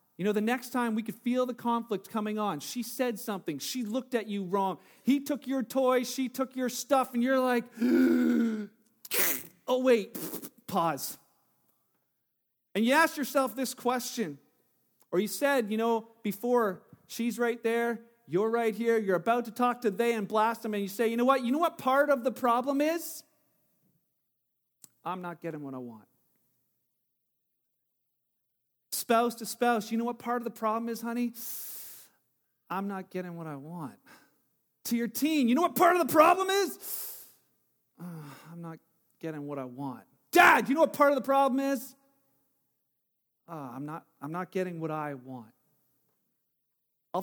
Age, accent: 40-59, American